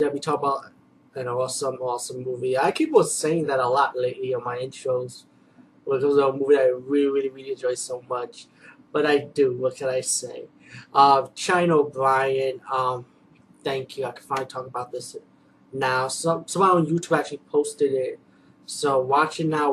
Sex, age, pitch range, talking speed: male, 20-39, 135-175 Hz, 185 wpm